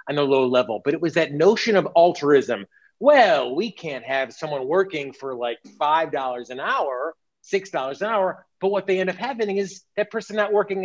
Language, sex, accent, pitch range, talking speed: English, male, American, 140-200 Hz, 205 wpm